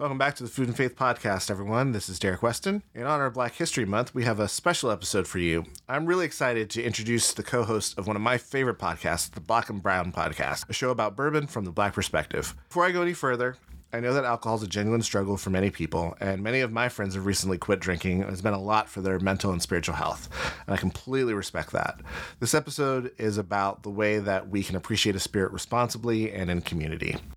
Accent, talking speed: American, 235 wpm